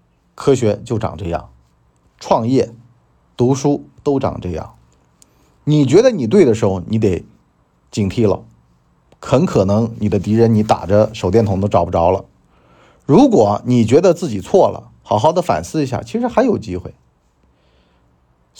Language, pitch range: Chinese, 80-135 Hz